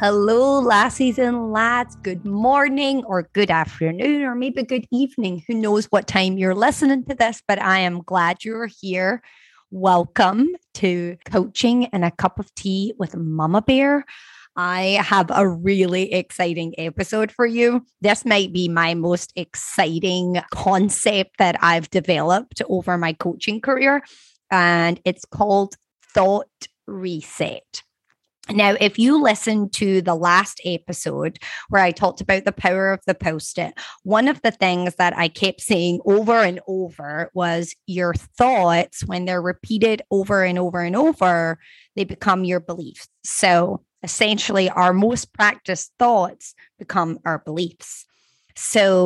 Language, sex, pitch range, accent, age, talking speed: English, female, 175-220 Hz, American, 20-39, 145 wpm